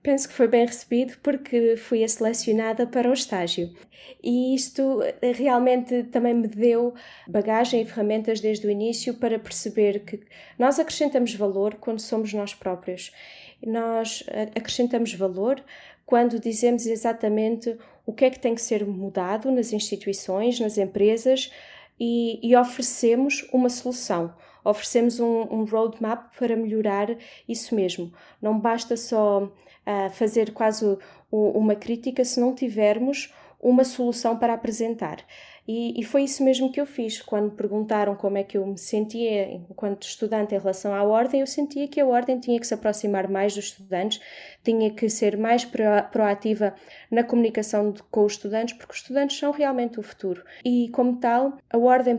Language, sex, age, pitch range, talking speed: Portuguese, female, 20-39, 210-245 Hz, 155 wpm